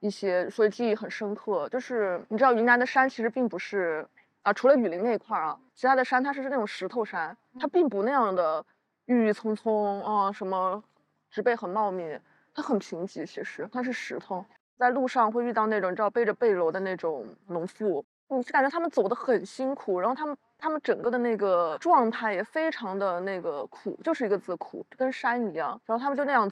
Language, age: Chinese, 20-39